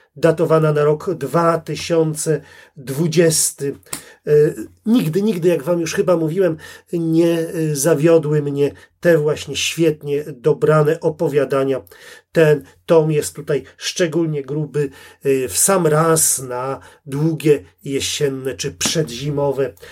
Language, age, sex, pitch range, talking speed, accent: Polish, 40-59, male, 145-170 Hz, 100 wpm, native